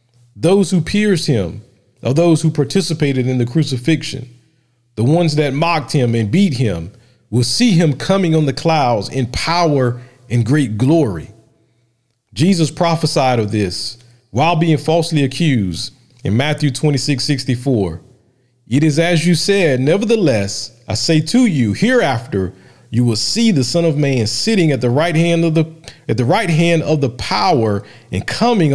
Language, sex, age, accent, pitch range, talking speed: English, male, 40-59, American, 120-155 Hz, 165 wpm